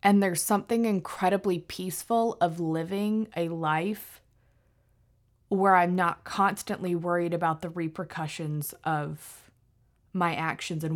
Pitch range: 120-185 Hz